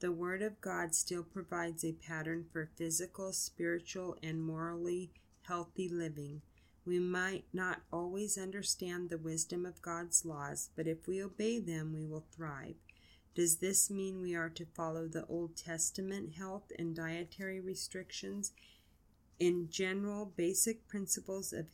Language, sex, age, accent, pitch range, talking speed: English, female, 30-49, American, 165-190 Hz, 145 wpm